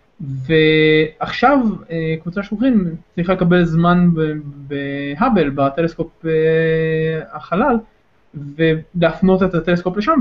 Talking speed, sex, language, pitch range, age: 75 wpm, male, Hebrew, 160-210 Hz, 20-39